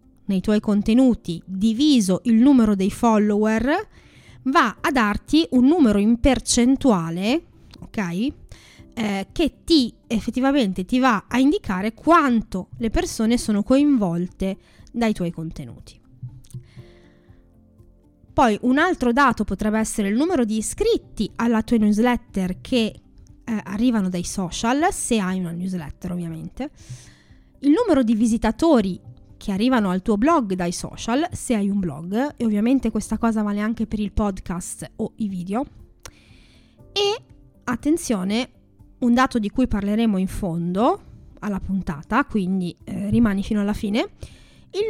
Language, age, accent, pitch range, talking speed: Italian, 20-39, native, 190-255 Hz, 130 wpm